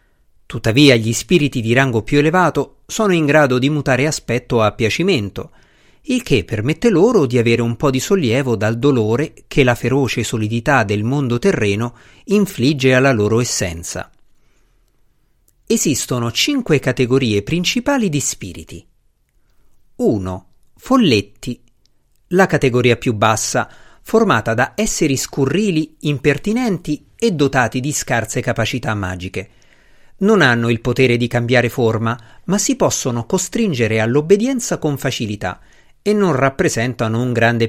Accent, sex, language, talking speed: native, male, Italian, 125 wpm